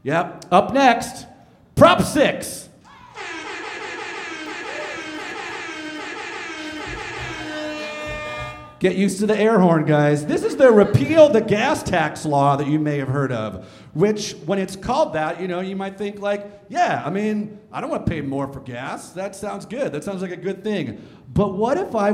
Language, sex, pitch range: English, male, 140-230 Hz